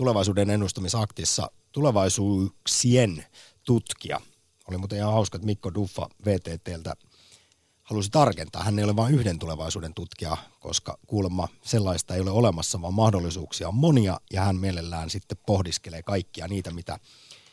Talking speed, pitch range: 135 wpm, 90-110 Hz